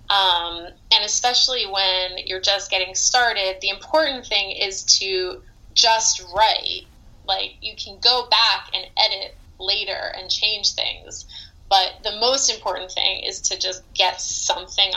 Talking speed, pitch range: 145 wpm, 180-215 Hz